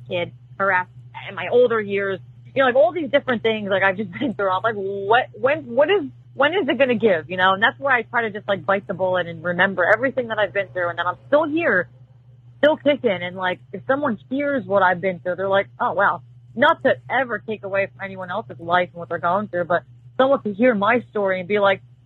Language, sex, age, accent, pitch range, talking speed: English, female, 30-49, American, 170-220 Hz, 255 wpm